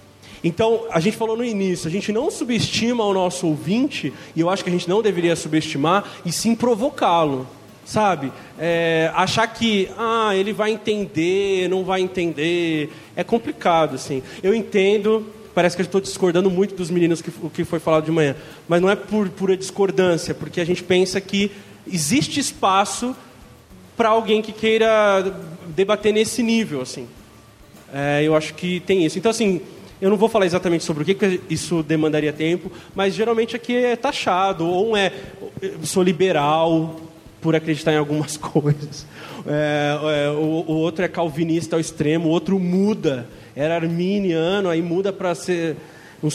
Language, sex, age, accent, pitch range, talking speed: Portuguese, male, 20-39, Brazilian, 160-200 Hz, 165 wpm